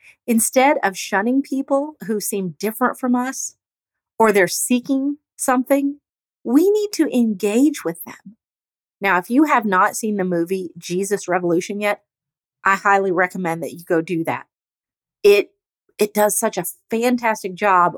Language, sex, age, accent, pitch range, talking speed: English, female, 40-59, American, 180-245 Hz, 150 wpm